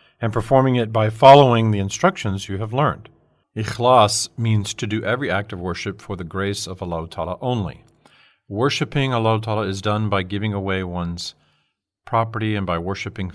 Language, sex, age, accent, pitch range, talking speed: English, male, 40-59, American, 95-115 Hz, 160 wpm